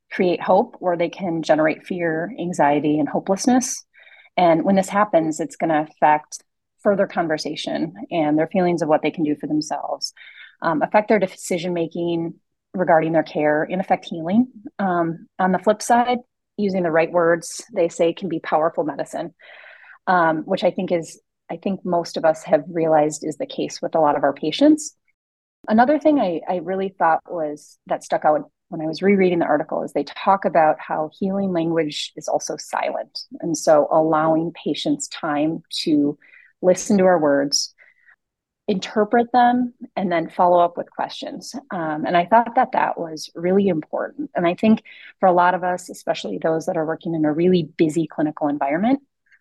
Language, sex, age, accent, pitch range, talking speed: English, female, 30-49, American, 160-205 Hz, 180 wpm